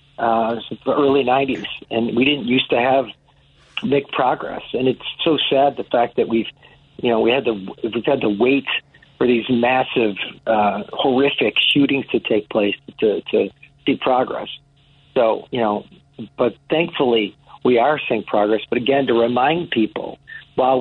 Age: 50-69